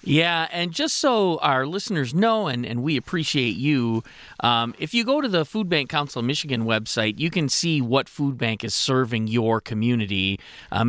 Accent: American